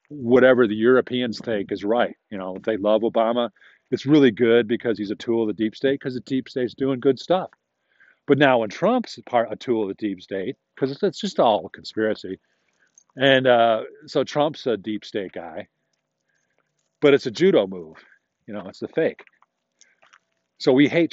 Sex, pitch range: male, 105-135 Hz